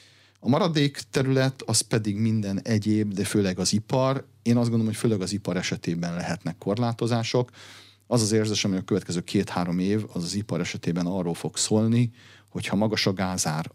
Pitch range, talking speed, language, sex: 95-115 Hz, 175 wpm, Hungarian, male